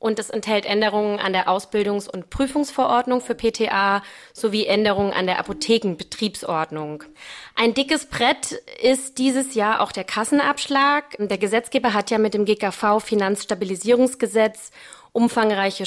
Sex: female